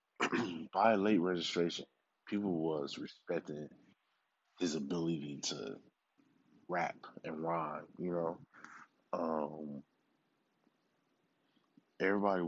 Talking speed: 75 wpm